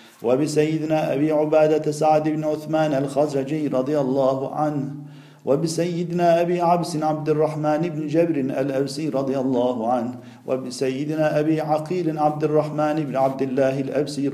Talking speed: 125 wpm